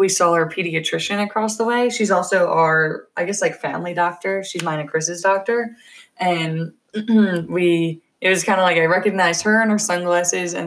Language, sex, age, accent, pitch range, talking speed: English, female, 20-39, American, 170-200 Hz, 190 wpm